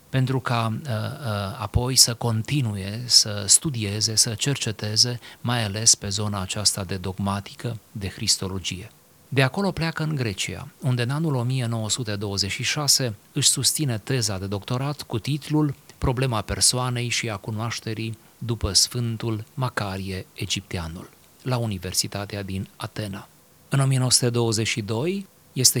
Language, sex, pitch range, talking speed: Romanian, male, 100-125 Hz, 120 wpm